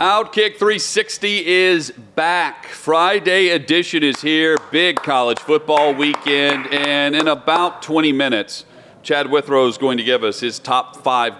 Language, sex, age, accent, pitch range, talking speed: English, male, 40-59, American, 100-145 Hz, 140 wpm